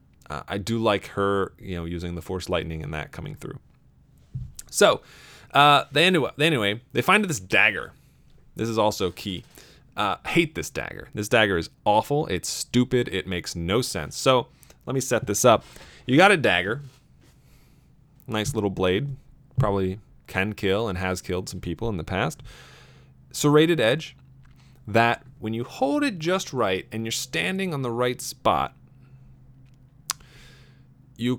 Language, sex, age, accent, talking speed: English, male, 30-49, American, 160 wpm